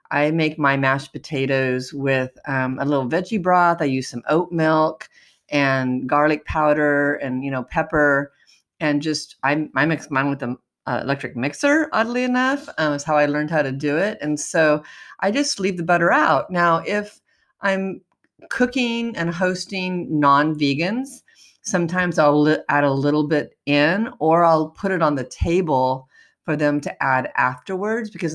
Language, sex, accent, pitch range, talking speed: English, female, American, 135-165 Hz, 165 wpm